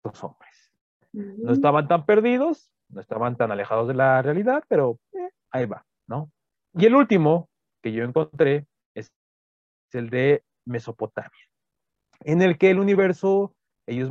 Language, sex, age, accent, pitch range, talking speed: Spanish, male, 40-59, Mexican, 120-185 Hz, 140 wpm